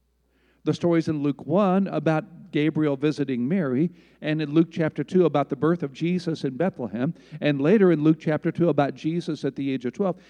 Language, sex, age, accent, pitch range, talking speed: English, male, 50-69, American, 130-175 Hz, 200 wpm